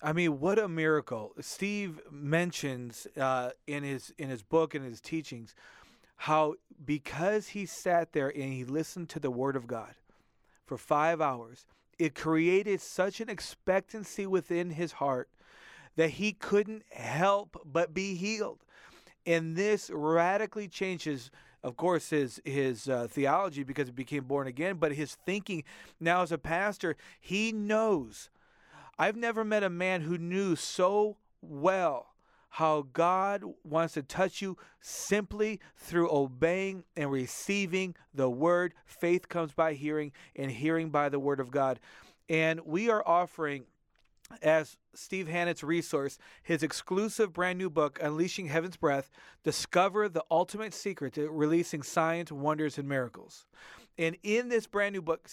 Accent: American